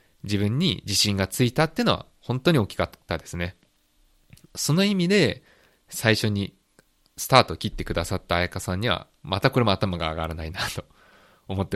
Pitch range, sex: 85-135 Hz, male